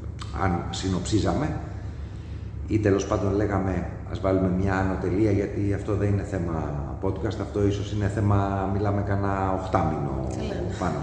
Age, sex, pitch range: 40-59, male, 90-105 Hz